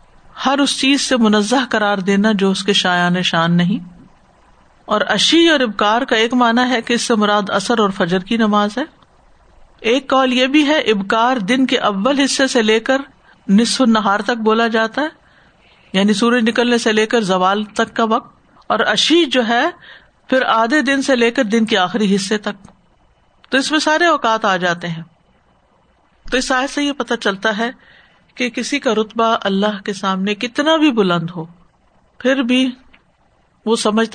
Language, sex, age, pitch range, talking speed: Urdu, female, 50-69, 190-240 Hz, 185 wpm